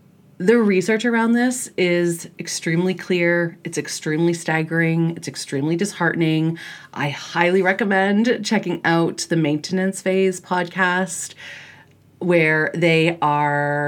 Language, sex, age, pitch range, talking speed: English, female, 30-49, 160-200 Hz, 110 wpm